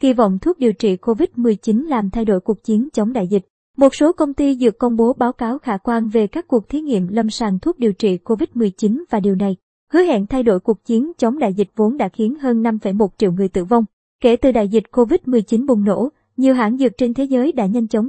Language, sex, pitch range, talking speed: Vietnamese, male, 215-255 Hz, 240 wpm